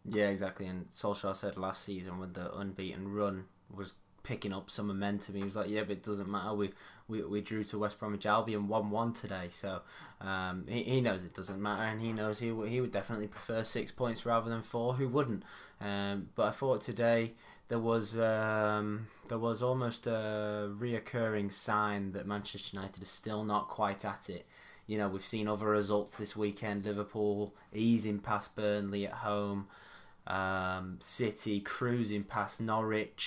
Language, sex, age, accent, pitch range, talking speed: English, male, 20-39, British, 100-110 Hz, 180 wpm